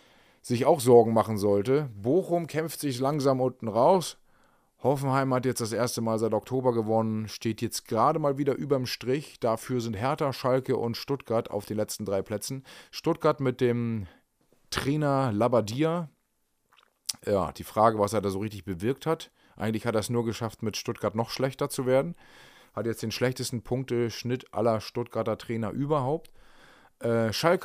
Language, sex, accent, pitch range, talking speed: German, male, German, 105-135 Hz, 165 wpm